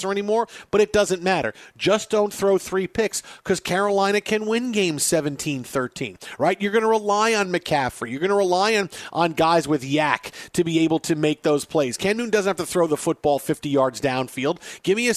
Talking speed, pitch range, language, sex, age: 210 wpm, 155-205 Hz, English, male, 40-59